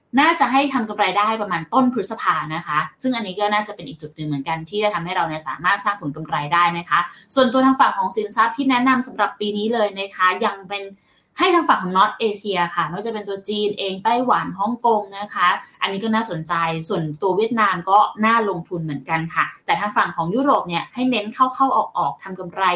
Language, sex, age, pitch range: Thai, female, 10-29, 175-245 Hz